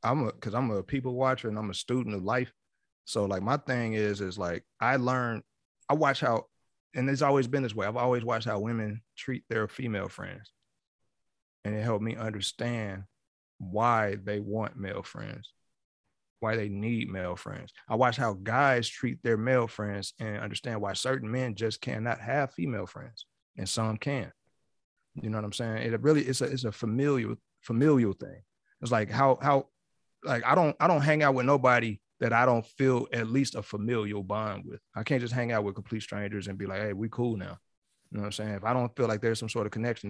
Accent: American